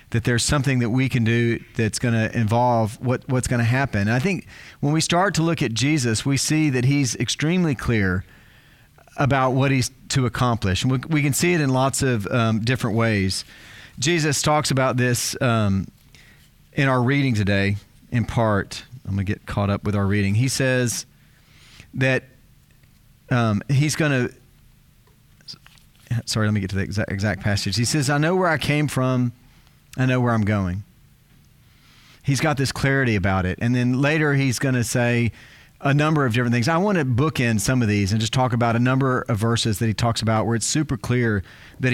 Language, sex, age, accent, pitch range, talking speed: English, male, 40-59, American, 110-140 Hz, 200 wpm